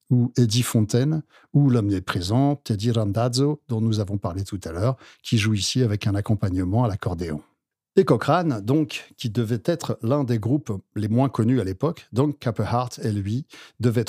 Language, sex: French, male